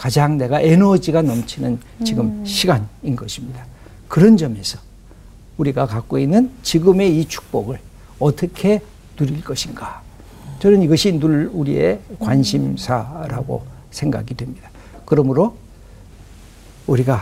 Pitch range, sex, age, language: 125-185 Hz, male, 60-79, Korean